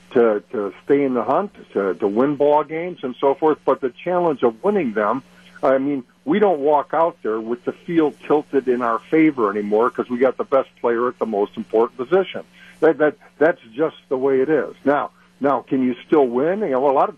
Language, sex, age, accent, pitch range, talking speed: English, male, 50-69, American, 120-150 Hz, 225 wpm